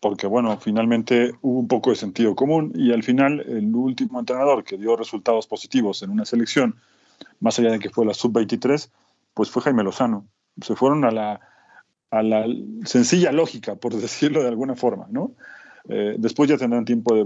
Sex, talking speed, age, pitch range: male, 180 wpm, 40-59, 110-150 Hz